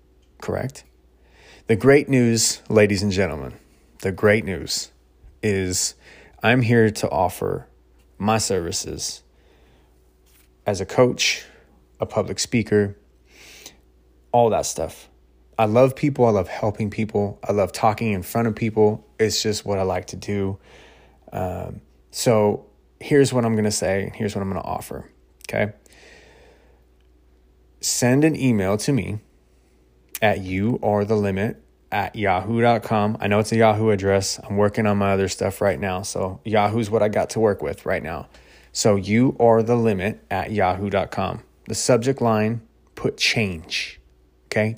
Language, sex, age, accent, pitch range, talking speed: English, male, 20-39, American, 90-115 Hz, 150 wpm